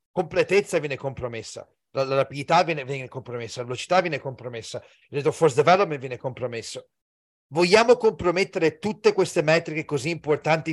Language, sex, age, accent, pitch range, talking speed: Italian, male, 40-59, native, 135-170 Hz, 145 wpm